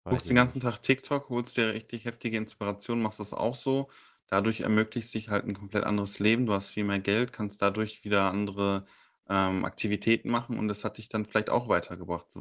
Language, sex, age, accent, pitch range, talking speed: German, male, 10-29, German, 100-120 Hz, 215 wpm